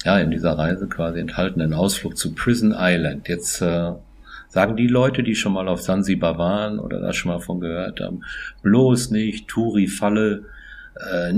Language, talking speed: German, 170 wpm